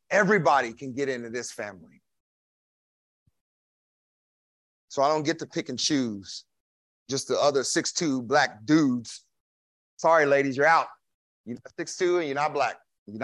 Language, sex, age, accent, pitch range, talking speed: English, male, 30-49, American, 110-175 Hz, 145 wpm